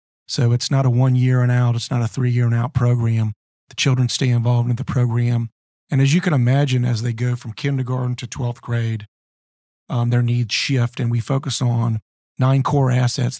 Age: 40-59